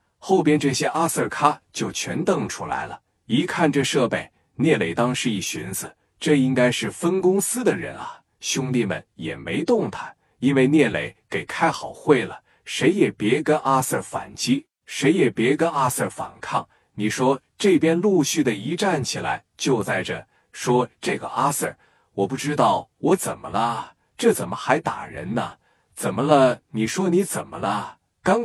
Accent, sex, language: native, male, Chinese